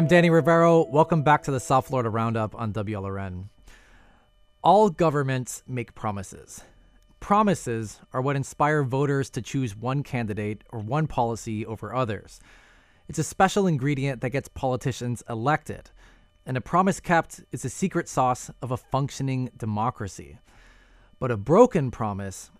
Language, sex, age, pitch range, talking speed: English, male, 20-39, 110-150 Hz, 145 wpm